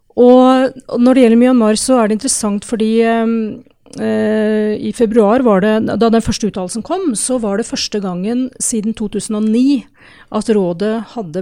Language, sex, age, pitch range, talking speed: English, female, 40-59, 195-240 Hz, 170 wpm